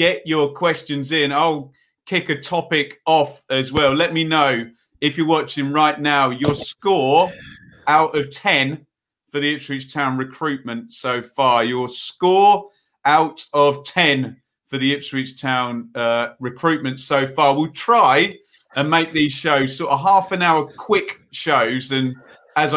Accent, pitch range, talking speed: British, 130-155 Hz, 155 wpm